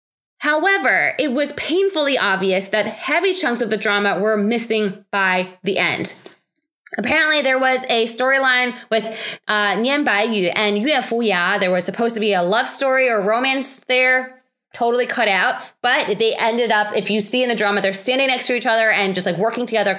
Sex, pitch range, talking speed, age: female, 215-275 Hz, 190 wpm, 20-39